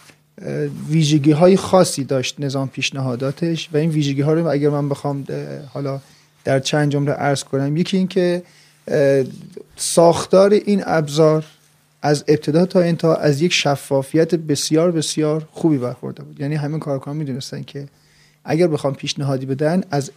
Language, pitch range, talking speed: Persian, 140-170 Hz, 135 wpm